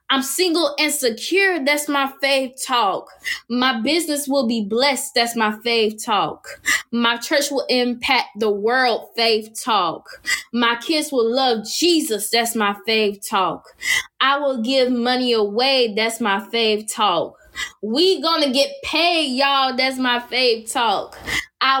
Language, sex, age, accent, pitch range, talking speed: English, female, 20-39, American, 225-275 Hz, 145 wpm